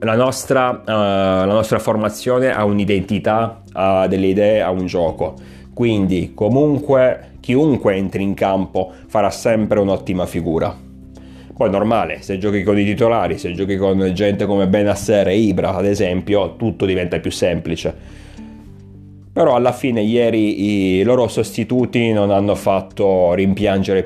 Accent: native